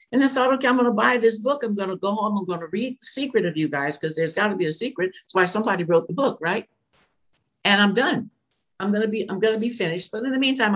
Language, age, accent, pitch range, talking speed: English, 60-79, American, 160-225 Hz, 285 wpm